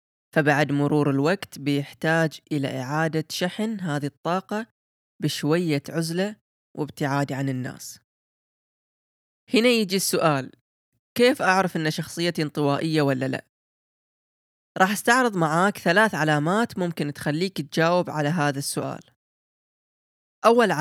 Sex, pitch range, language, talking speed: female, 150-185 Hz, Arabic, 105 wpm